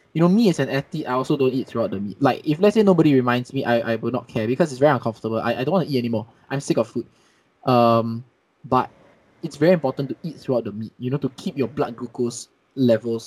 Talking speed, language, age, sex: 260 wpm, Hindi, 20-39, male